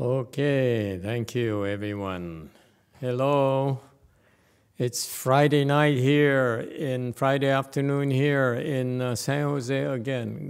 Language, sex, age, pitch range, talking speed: English, male, 60-79, 105-135 Hz, 105 wpm